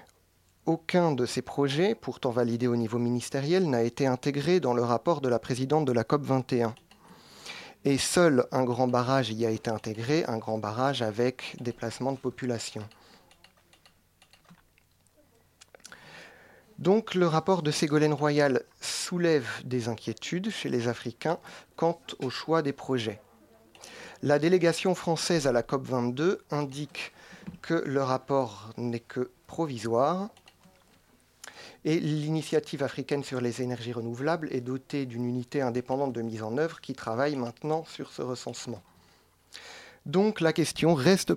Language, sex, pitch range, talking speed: French, male, 120-155 Hz, 135 wpm